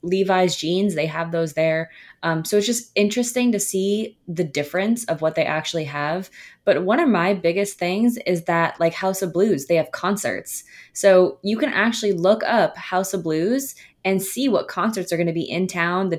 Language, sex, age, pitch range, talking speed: English, female, 20-39, 165-205 Hz, 205 wpm